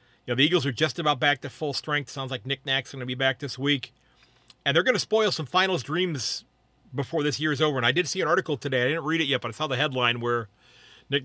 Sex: male